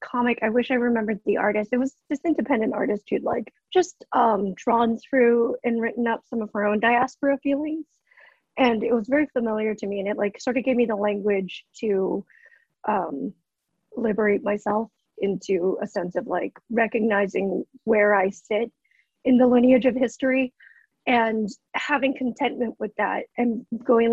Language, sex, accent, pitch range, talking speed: English, female, American, 215-255 Hz, 170 wpm